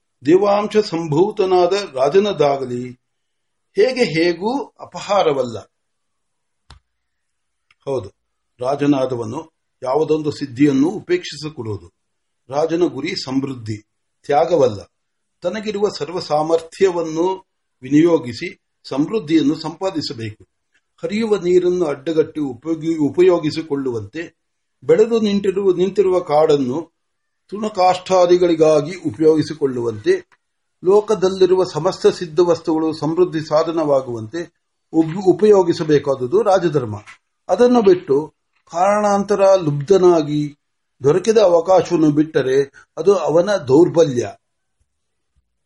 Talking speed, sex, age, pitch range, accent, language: 50 wpm, male, 60-79, 145-190 Hz, native, Marathi